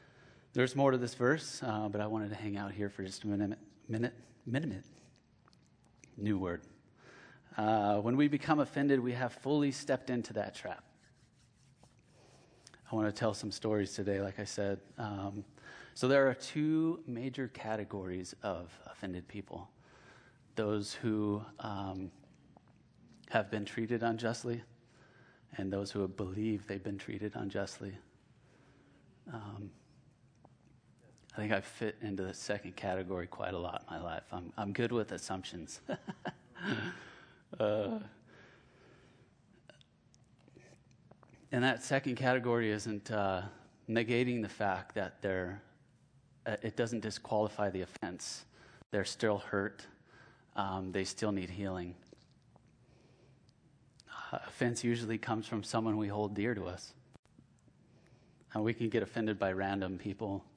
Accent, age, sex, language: American, 30-49, male, English